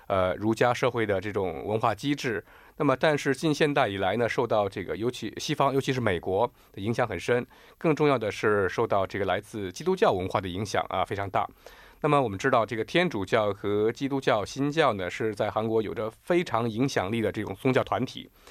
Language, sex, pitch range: Korean, male, 110-140 Hz